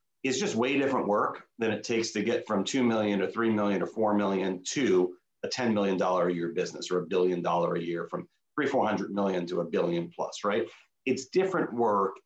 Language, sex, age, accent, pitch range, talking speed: English, male, 40-59, American, 100-130 Hz, 220 wpm